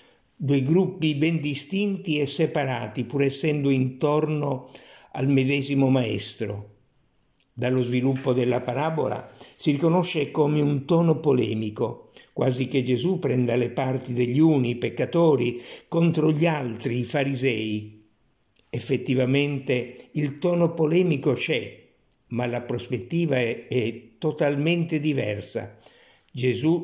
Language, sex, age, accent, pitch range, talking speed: Italian, male, 60-79, native, 125-150 Hz, 110 wpm